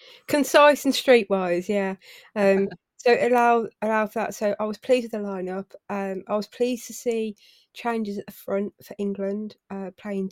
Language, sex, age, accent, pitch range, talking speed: English, female, 20-39, British, 190-215 Hz, 175 wpm